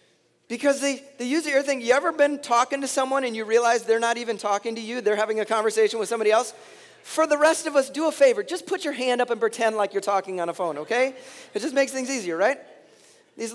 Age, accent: 30-49, American